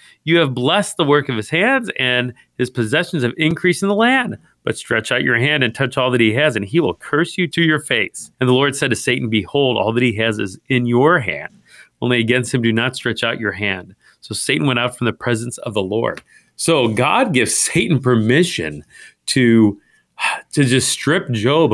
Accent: American